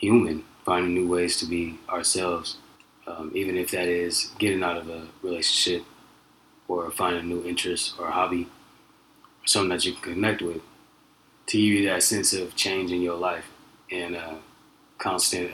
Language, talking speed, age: English, 175 wpm, 20-39